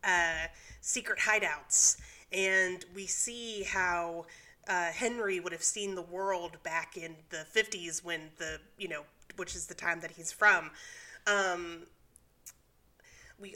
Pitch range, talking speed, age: 170-205 Hz, 135 wpm, 30-49